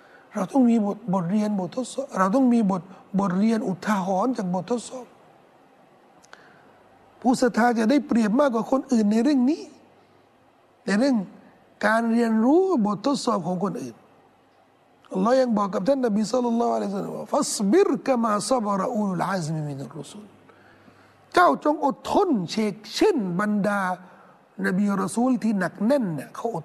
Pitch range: 190-250 Hz